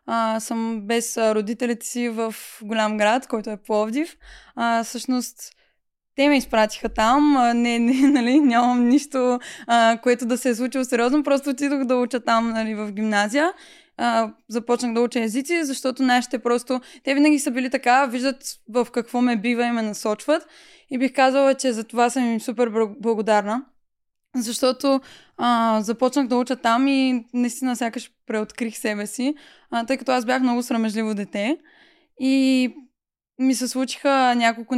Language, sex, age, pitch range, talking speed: Bulgarian, female, 20-39, 225-260 Hz, 160 wpm